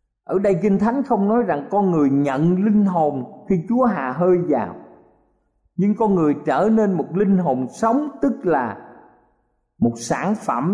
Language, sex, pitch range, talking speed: Vietnamese, male, 125-210 Hz, 175 wpm